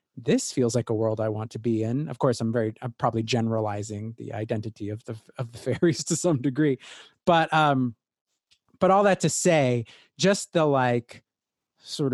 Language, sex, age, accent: English, male, 30-49, American